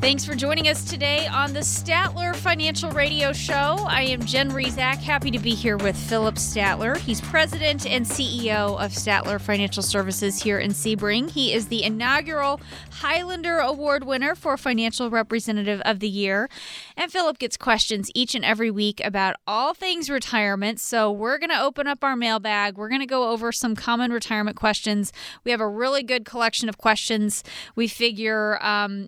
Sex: female